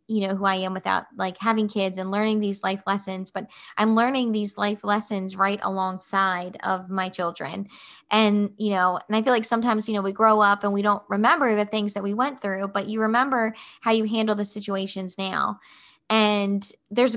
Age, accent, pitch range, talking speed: 20-39, American, 200-230 Hz, 205 wpm